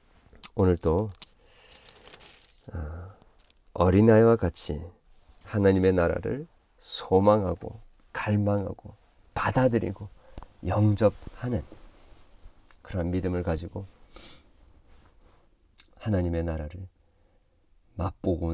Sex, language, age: male, Korean, 40-59